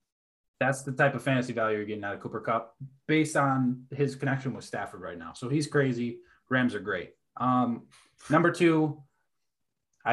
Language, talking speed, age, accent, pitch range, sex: English, 170 wpm, 20-39, American, 115-140 Hz, male